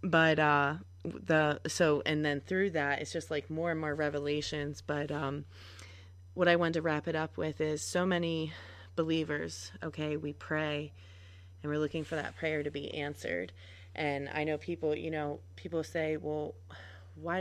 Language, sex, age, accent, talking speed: English, female, 20-39, American, 175 wpm